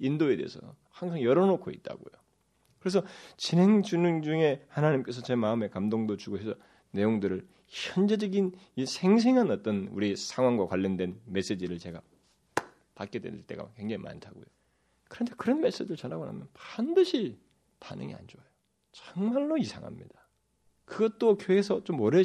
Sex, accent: male, native